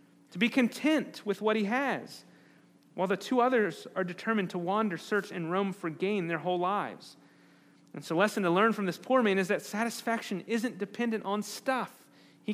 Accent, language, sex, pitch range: American, English, male, 175-220 Hz